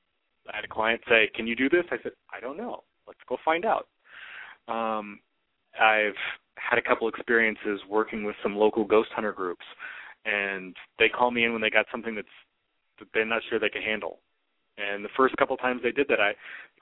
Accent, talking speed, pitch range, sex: American, 215 wpm, 105-130 Hz, male